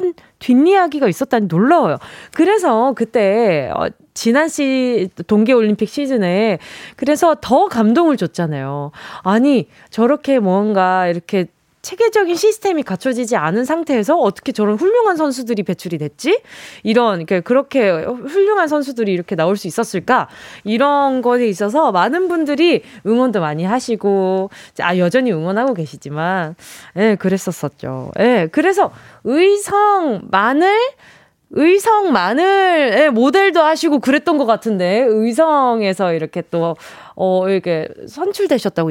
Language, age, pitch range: Korean, 20-39, 185-305 Hz